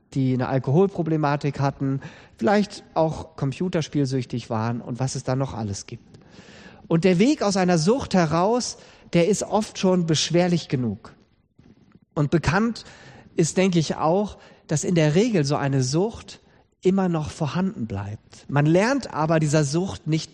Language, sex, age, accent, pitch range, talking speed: German, male, 40-59, German, 130-185 Hz, 150 wpm